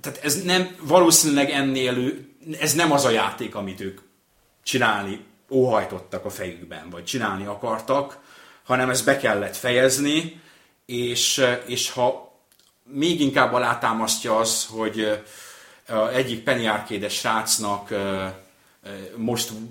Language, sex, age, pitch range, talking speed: Hungarian, male, 30-49, 105-125 Hz, 110 wpm